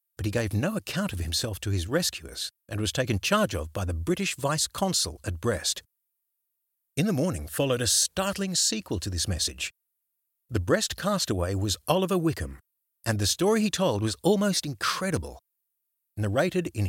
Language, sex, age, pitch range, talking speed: English, male, 60-79, 105-170 Hz, 165 wpm